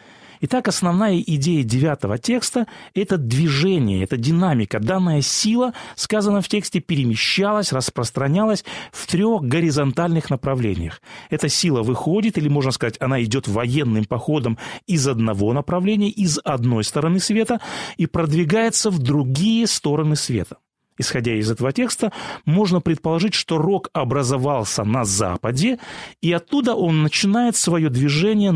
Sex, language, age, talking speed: male, Russian, 30-49, 130 wpm